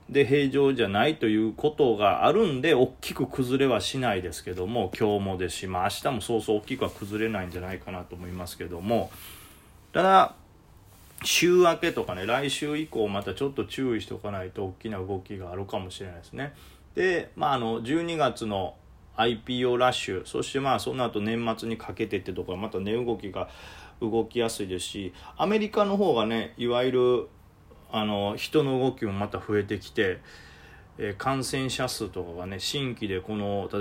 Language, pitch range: Japanese, 95-120 Hz